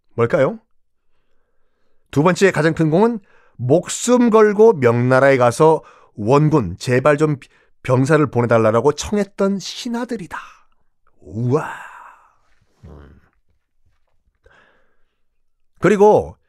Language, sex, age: Korean, male, 40-59